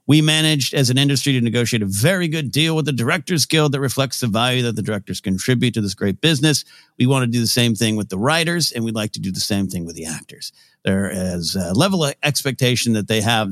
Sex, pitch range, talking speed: male, 110-155 Hz, 255 wpm